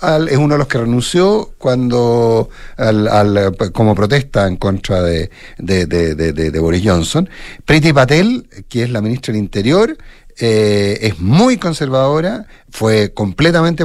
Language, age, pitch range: Spanish, 50-69, 100-140 Hz